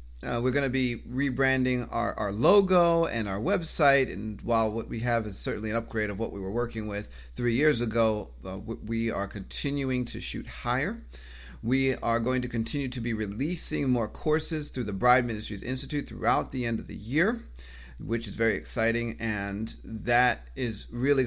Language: English